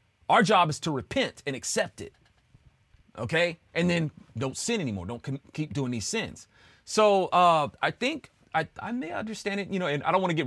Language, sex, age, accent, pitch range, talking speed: English, male, 30-49, American, 105-170 Hz, 205 wpm